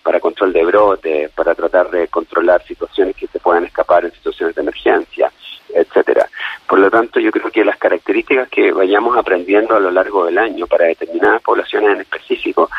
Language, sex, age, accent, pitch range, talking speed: Spanish, male, 30-49, Argentinian, 335-420 Hz, 185 wpm